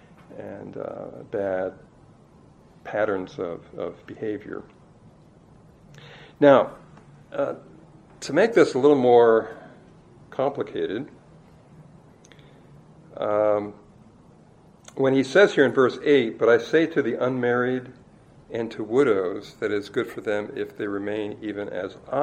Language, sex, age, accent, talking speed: English, male, 60-79, American, 120 wpm